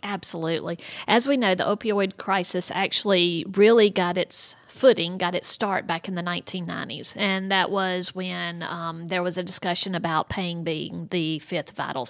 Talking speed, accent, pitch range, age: 170 wpm, American, 165-195 Hz, 40-59